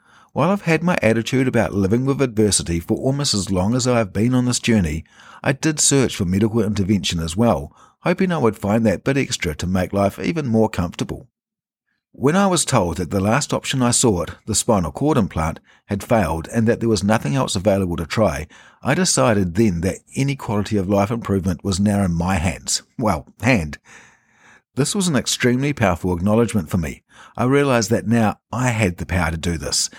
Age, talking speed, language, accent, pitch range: 50-69, 200 wpm, English, Australian, 95-130 Hz